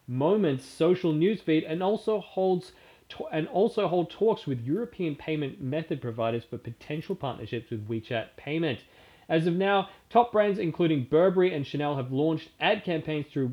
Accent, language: Australian, English